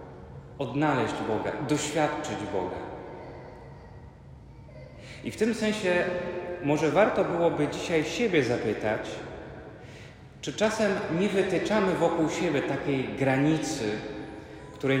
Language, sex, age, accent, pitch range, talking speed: Polish, male, 30-49, native, 125-155 Hz, 90 wpm